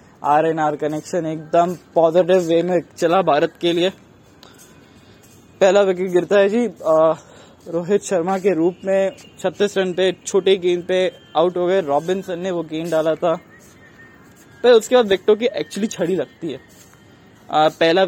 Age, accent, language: 20-39, native, Hindi